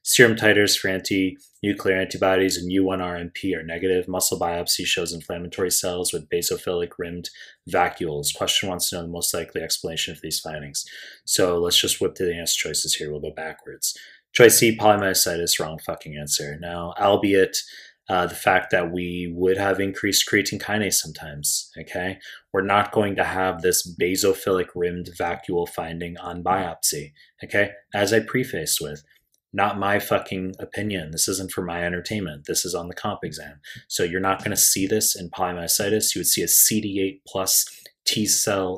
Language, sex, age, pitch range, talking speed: English, male, 30-49, 85-100 Hz, 170 wpm